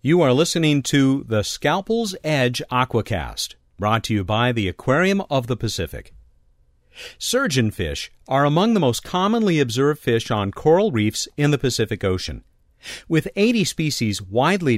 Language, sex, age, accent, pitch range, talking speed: English, male, 50-69, American, 105-155 Hz, 145 wpm